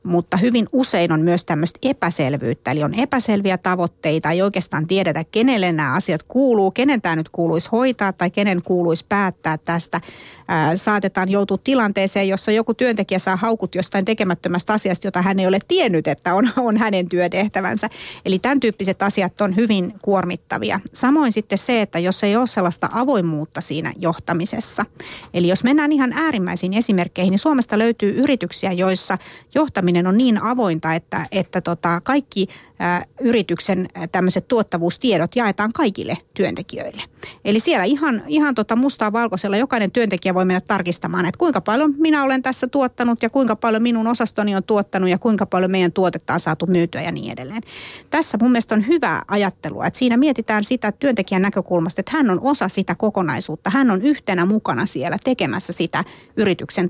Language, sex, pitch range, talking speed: Finnish, female, 175-235 Hz, 165 wpm